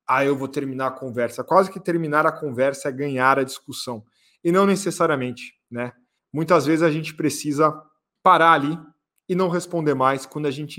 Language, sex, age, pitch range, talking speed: Portuguese, male, 20-39, 135-165 Hz, 185 wpm